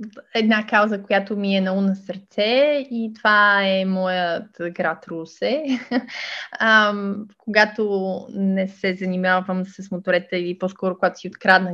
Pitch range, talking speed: 175-215 Hz, 135 wpm